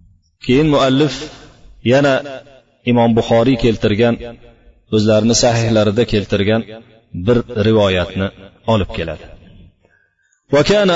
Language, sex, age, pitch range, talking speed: Russian, male, 40-59, 110-135 Hz, 90 wpm